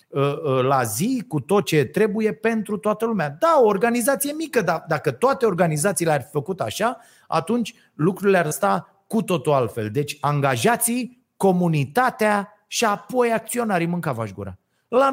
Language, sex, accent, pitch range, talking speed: Romanian, male, native, 145-230 Hz, 145 wpm